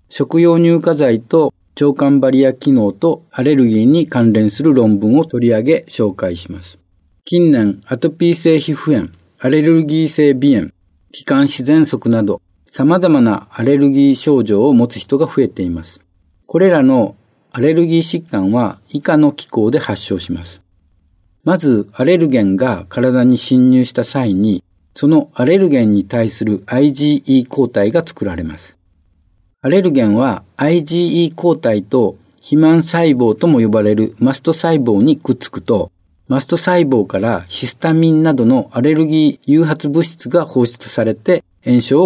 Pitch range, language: 105-160 Hz, Japanese